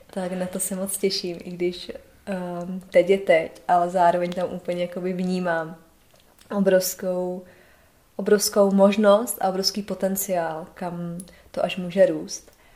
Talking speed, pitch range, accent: 135 wpm, 180-200 Hz, native